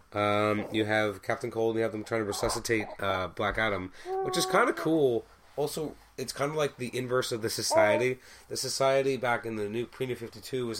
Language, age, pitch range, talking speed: English, 30-49, 105-125 Hz, 220 wpm